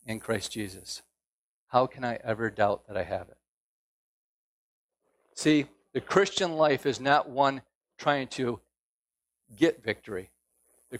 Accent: American